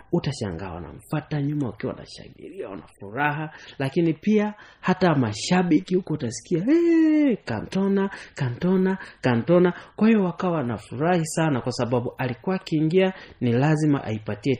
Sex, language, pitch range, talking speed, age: male, Swahili, 110-175 Hz, 115 wpm, 30-49